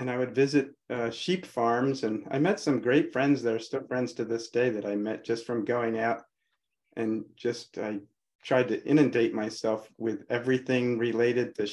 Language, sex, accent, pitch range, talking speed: English, male, American, 110-130 Hz, 190 wpm